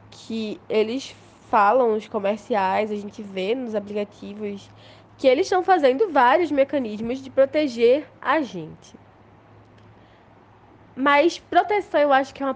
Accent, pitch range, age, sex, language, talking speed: Brazilian, 205-275 Hz, 10-29, female, Portuguese, 130 wpm